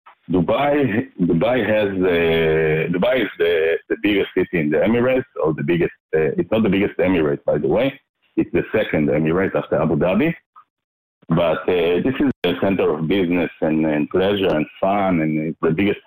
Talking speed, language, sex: 180 wpm, Hebrew, male